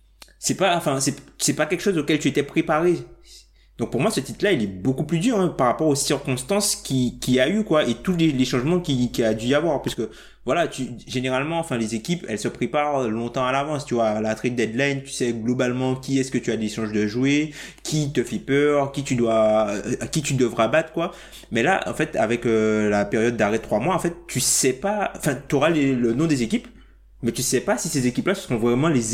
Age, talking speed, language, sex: 20-39, 250 wpm, French, male